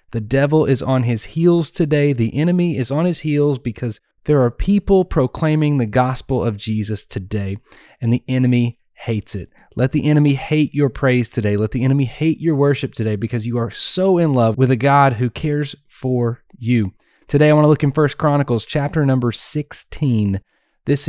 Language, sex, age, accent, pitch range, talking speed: English, male, 30-49, American, 120-150 Hz, 190 wpm